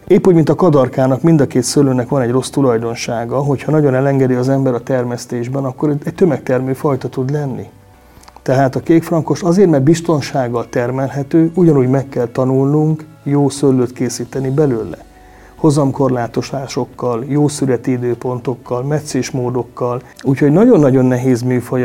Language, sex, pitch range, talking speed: Hungarian, male, 125-145 Hz, 145 wpm